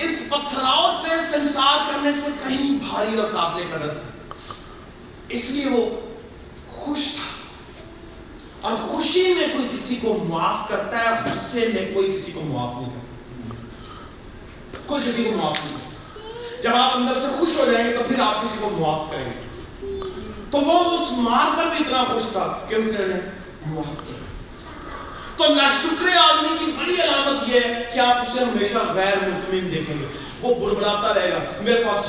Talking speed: 135 wpm